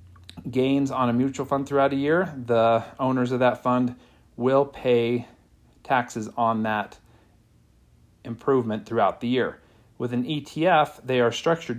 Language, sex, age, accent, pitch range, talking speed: English, male, 40-59, American, 115-135 Hz, 145 wpm